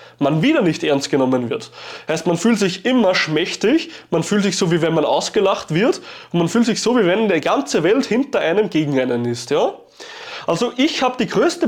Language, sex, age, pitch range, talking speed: German, male, 20-39, 180-270 Hz, 215 wpm